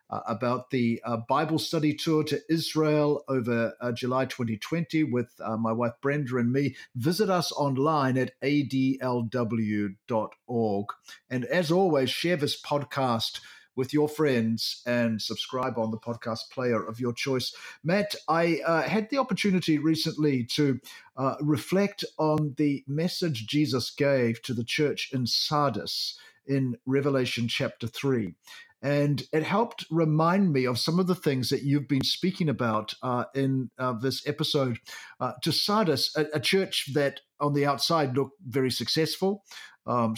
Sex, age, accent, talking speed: male, 50-69, Australian, 150 wpm